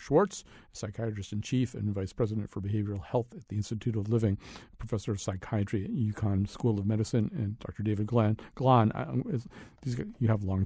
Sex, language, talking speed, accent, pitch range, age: male, English, 160 wpm, American, 110-135 Hz, 50-69